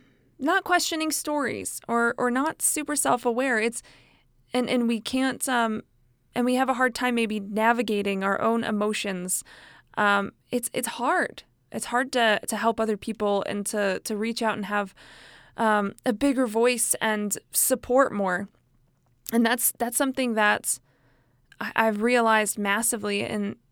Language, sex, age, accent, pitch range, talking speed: English, female, 20-39, American, 210-265 Hz, 150 wpm